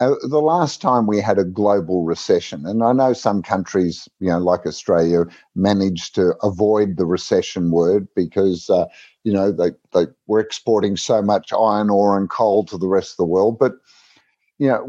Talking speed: 190 wpm